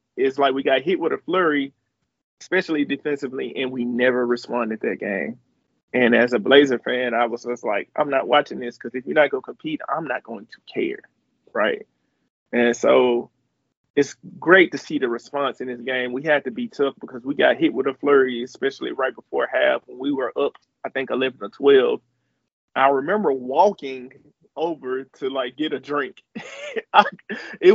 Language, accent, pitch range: English, American, 130-195 Hz